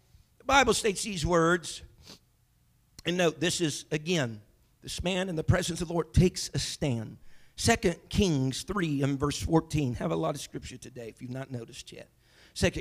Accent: American